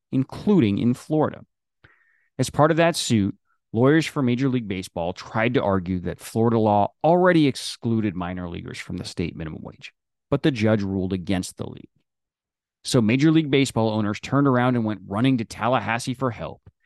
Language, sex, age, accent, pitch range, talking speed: English, male, 30-49, American, 100-135 Hz, 175 wpm